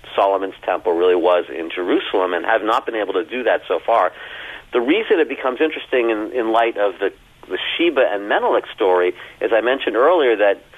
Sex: male